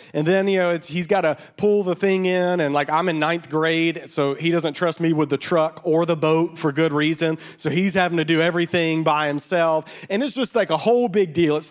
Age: 30-49